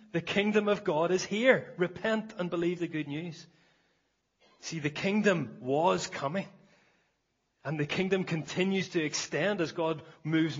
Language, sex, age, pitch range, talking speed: English, male, 30-49, 125-160 Hz, 145 wpm